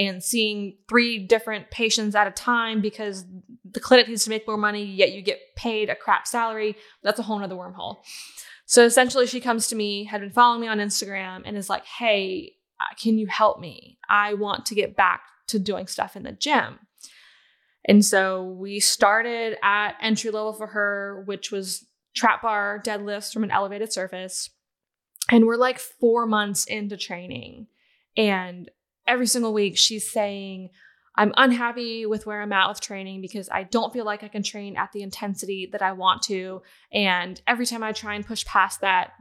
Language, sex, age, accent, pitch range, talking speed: English, female, 20-39, American, 195-225 Hz, 185 wpm